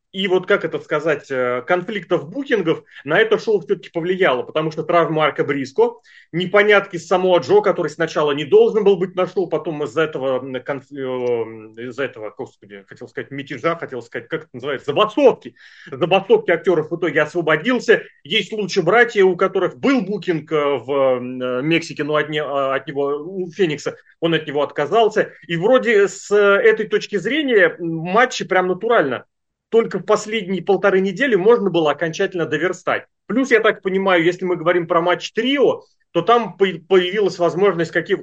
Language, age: Russian, 30-49